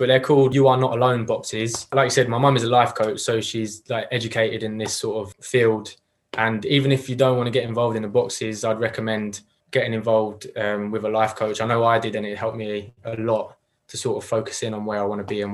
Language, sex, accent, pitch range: English, male, British, 110-125 Hz